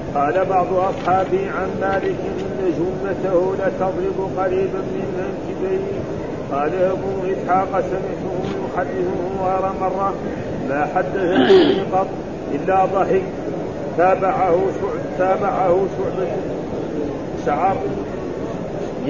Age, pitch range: 50-69, 185-190 Hz